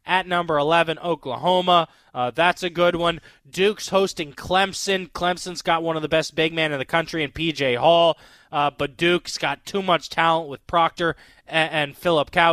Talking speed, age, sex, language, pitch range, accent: 175 wpm, 20-39, male, English, 155-190 Hz, American